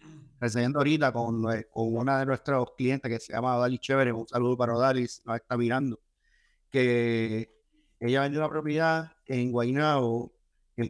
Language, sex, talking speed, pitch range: Spanish, male, 155 wpm, 115-145 Hz